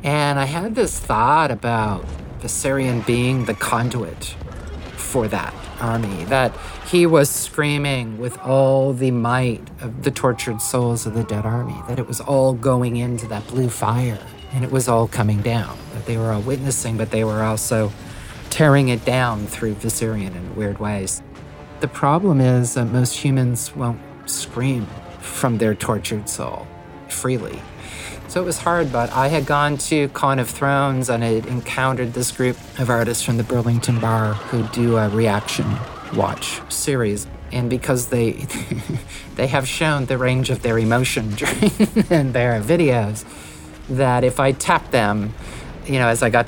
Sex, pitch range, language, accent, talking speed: male, 110-130 Hz, English, American, 165 wpm